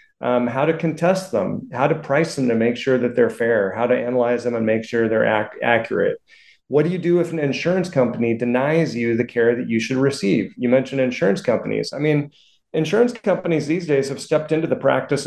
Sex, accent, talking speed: male, American, 215 wpm